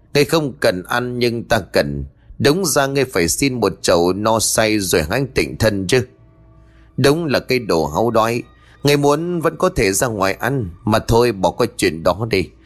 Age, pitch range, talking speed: 20-39, 95-140 Hz, 200 wpm